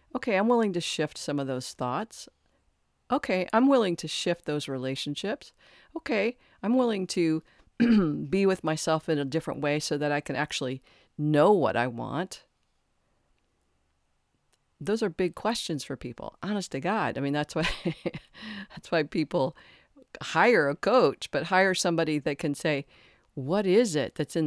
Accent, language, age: American, English, 50-69